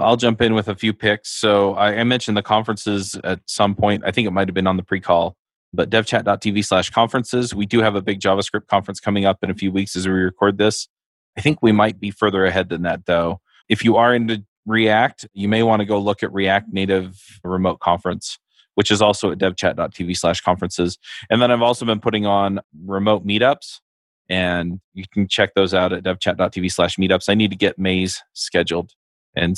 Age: 20-39